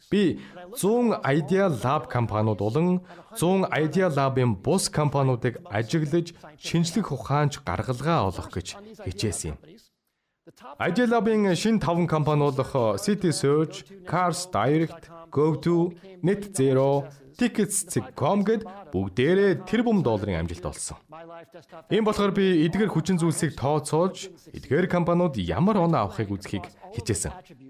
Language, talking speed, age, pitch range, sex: English, 100 wpm, 30-49, 120-180 Hz, male